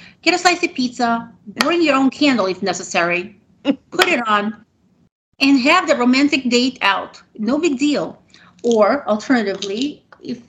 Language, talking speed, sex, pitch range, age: English, 150 wpm, female, 200-255 Hz, 40-59